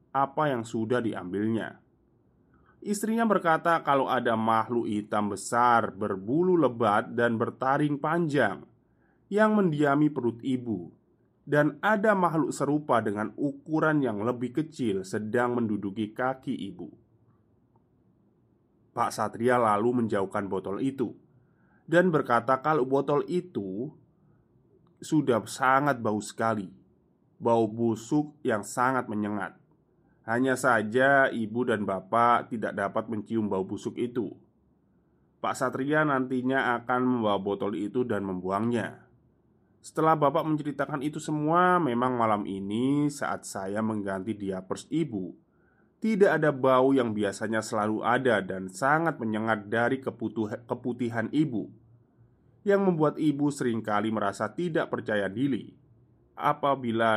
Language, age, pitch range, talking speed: Indonesian, 20-39, 110-140 Hz, 115 wpm